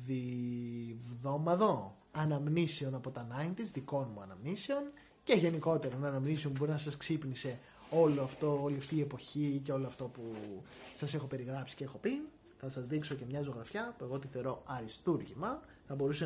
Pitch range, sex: 135-180 Hz, male